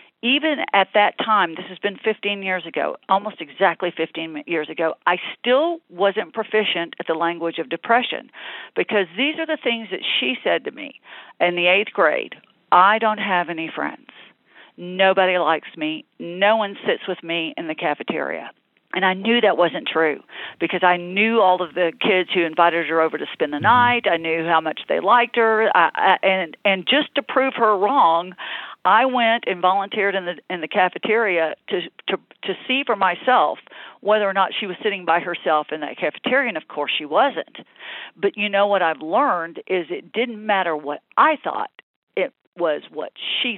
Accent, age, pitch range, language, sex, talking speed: American, 50-69, 170-220 Hz, English, female, 195 wpm